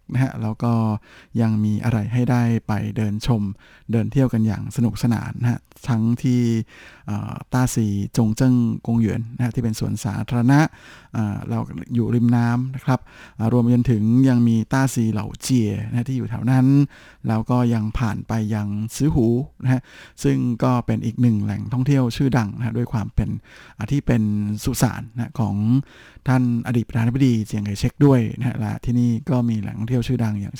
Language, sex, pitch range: Thai, male, 110-130 Hz